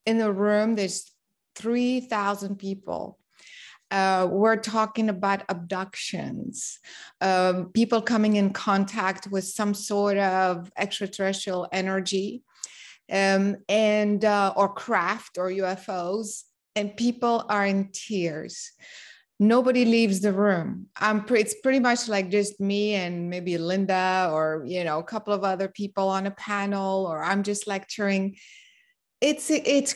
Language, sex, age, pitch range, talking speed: English, female, 20-39, 195-225 Hz, 130 wpm